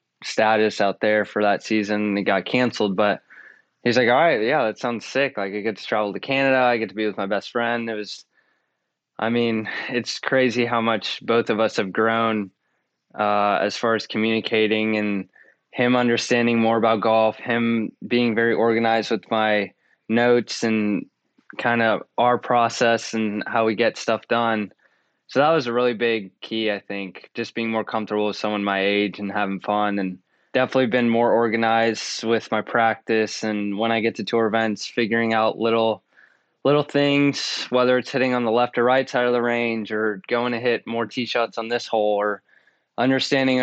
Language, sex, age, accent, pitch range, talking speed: English, male, 20-39, American, 105-120 Hz, 190 wpm